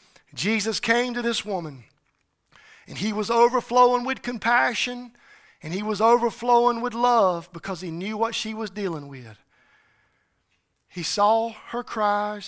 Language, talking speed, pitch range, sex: English, 140 wpm, 180-225 Hz, male